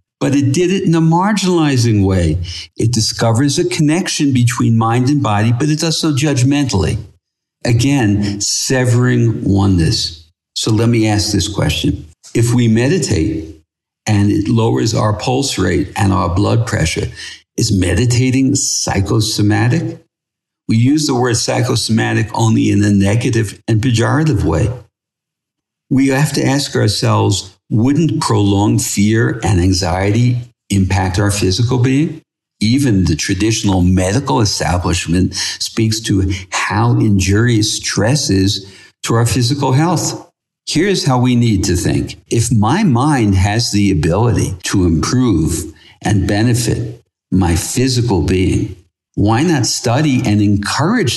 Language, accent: English, American